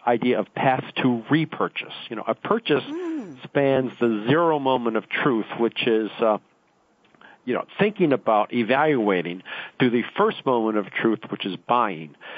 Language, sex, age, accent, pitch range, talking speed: English, male, 50-69, American, 110-135 Hz, 155 wpm